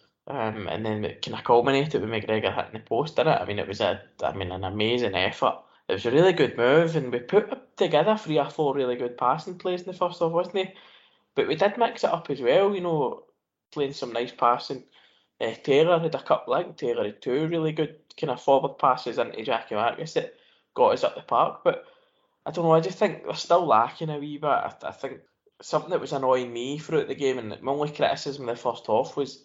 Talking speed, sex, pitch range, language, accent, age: 240 wpm, male, 125-185 Hz, English, British, 10-29